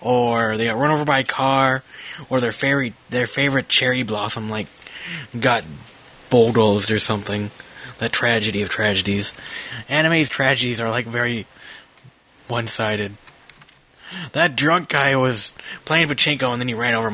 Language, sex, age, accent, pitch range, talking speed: English, male, 20-39, American, 110-155 Hz, 145 wpm